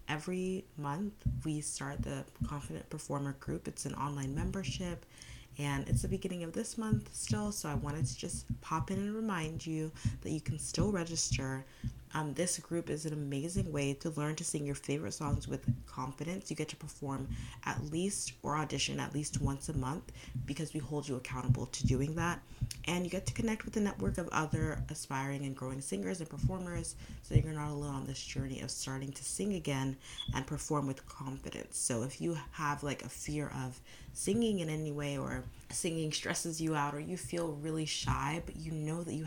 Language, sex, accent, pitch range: English, female, American, 135-160 Hz